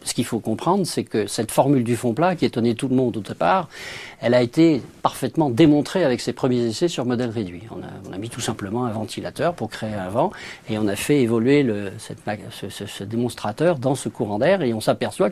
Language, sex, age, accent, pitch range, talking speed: French, male, 50-69, French, 110-140 Hz, 240 wpm